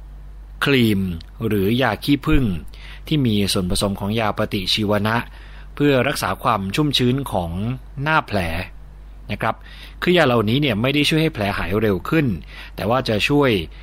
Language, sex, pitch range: Thai, male, 100-130 Hz